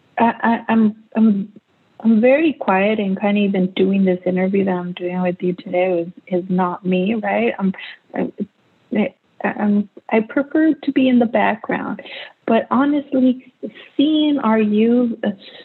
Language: English